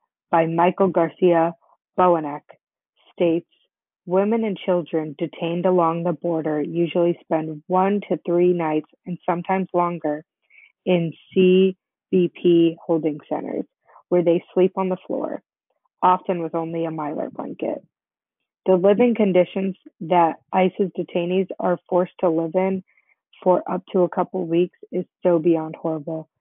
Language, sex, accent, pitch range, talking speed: English, female, American, 165-185 Hz, 130 wpm